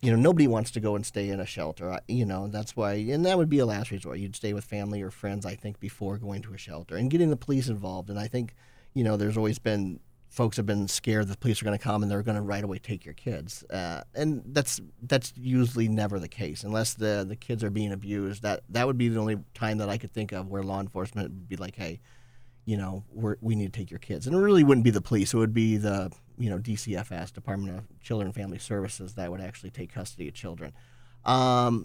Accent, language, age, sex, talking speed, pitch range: American, English, 40-59, male, 260 wpm, 100-120 Hz